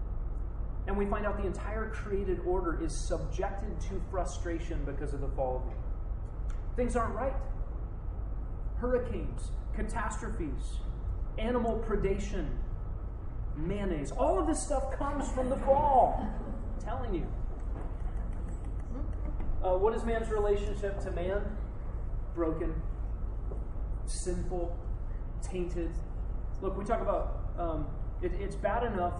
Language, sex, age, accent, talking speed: English, male, 30-49, American, 115 wpm